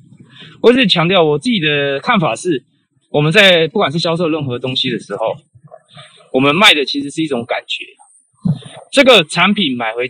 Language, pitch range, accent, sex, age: Chinese, 135-200 Hz, native, male, 20-39